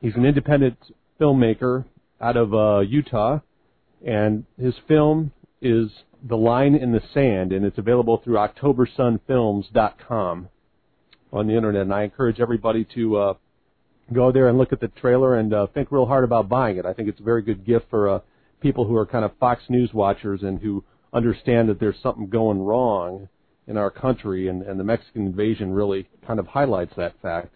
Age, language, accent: 40-59, English, American